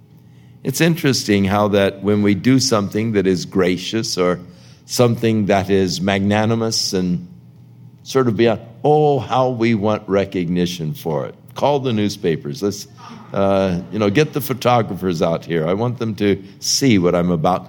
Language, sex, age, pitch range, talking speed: English, male, 60-79, 95-130 Hz, 165 wpm